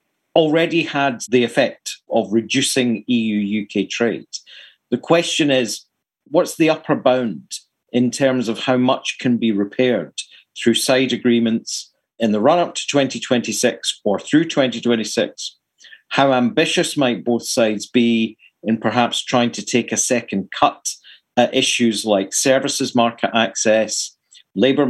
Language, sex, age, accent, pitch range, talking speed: English, male, 50-69, British, 115-135 Hz, 135 wpm